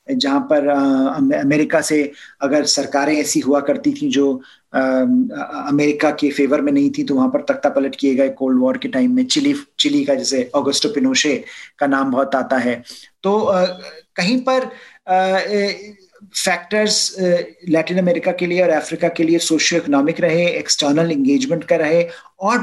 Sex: male